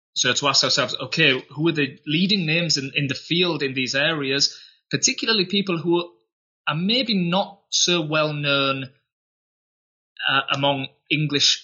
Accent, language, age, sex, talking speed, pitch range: British, English, 20-39, male, 150 wpm, 115-160 Hz